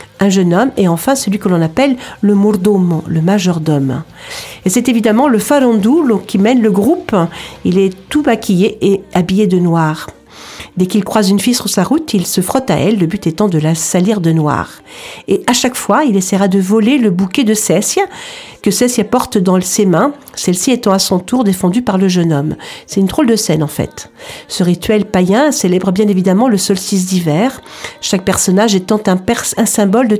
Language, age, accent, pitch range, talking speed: French, 50-69, French, 180-235 Hz, 205 wpm